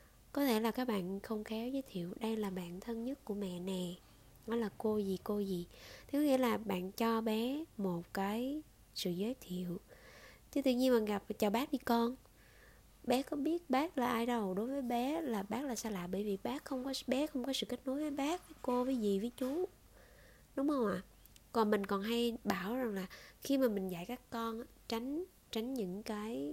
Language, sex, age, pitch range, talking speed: Vietnamese, female, 20-39, 190-250 Hz, 220 wpm